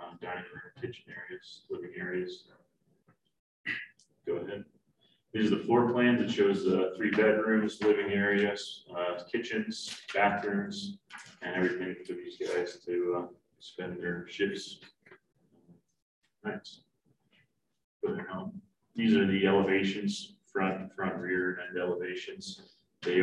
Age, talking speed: 30-49, 125 wpm